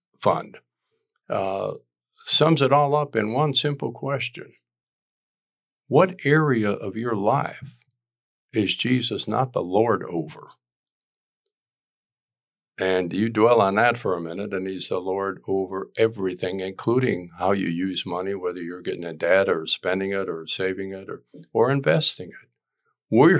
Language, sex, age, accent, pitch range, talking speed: English, male, 50-69, American, 95-130 Hz, 145 wpm